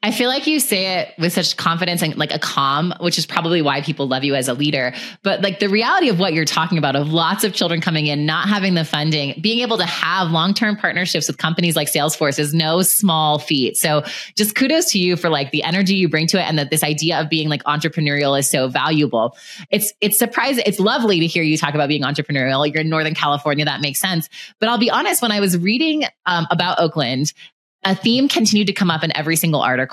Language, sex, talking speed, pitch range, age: English, female, 240 wpm, 150-195 Hz, 20-39